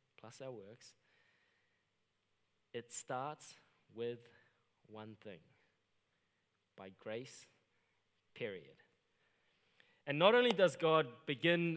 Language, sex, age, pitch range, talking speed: English, male, 20-39, 125-175 Hz, 85 wpm